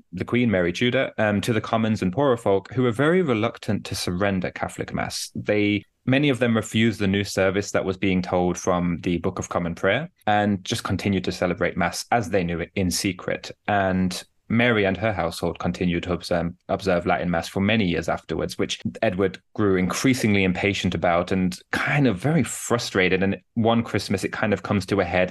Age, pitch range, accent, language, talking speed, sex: 20-39, 95-120 Hz, British, English, 205 wpm, male